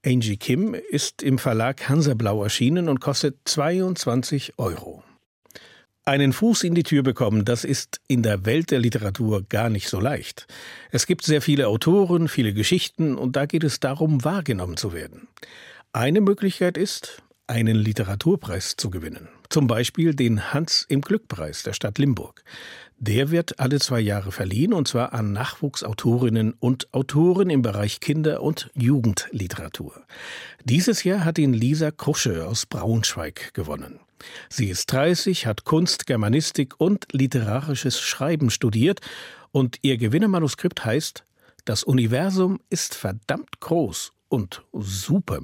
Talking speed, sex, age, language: 140 wpm, male, 60-79, German